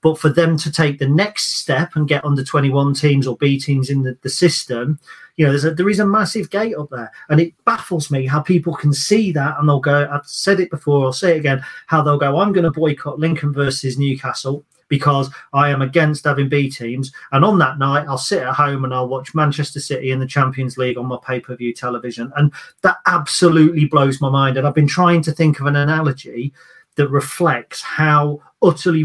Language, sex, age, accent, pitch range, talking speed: English, male, 40-59, British, 135-160 Hz, 215 wpm